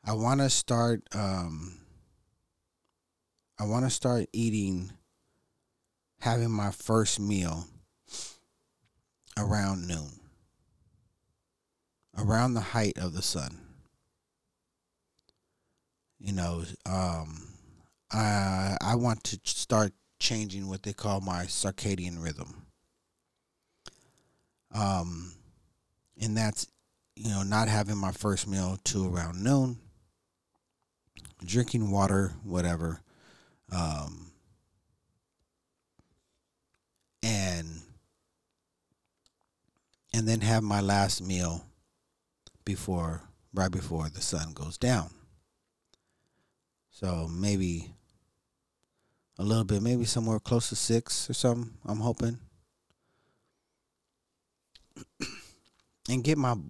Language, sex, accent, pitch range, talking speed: English, male, American, 90-110 Hz, 90 wpm